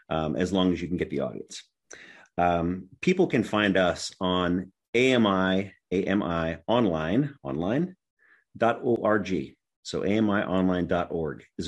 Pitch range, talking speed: 85-95 Hz, 125 wpm